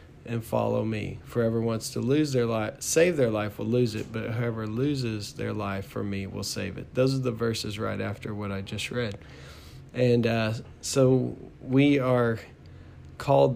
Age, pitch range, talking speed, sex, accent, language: 40-59, 110-130 Hz, 180 wpm, male, American, English